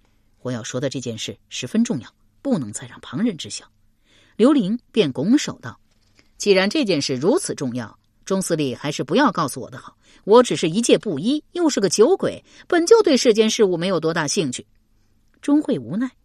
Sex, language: female, Chinese